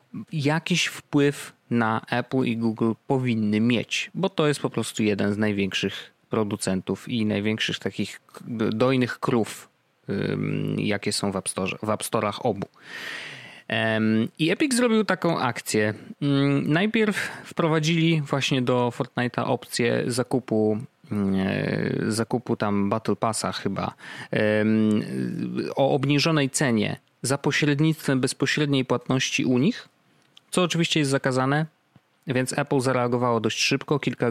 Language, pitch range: Polish, 110-150 Hz